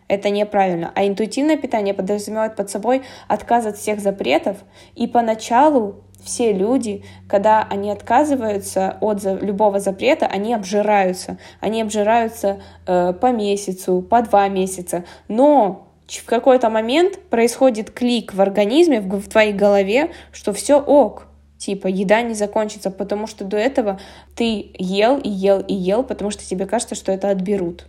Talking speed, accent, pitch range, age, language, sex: 145 wpm, native, 200-235 Hz, 10-29, Russian, female